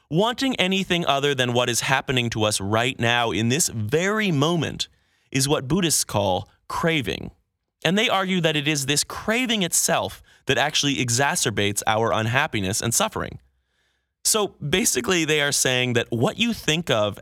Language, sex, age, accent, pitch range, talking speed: English, male, 30-49, American, 105-155 Hz, 160 wpm